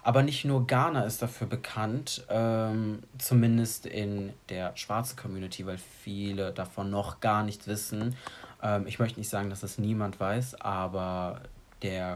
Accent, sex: German, male